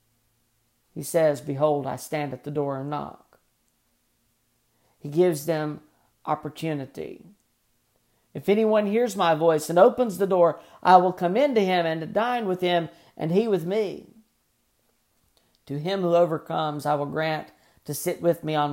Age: 50-69